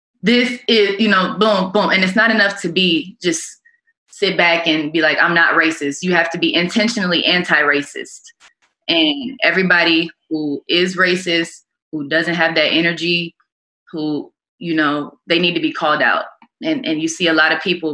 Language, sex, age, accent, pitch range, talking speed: English, female, 20-39, American, 160-210 Hz, 180 wpm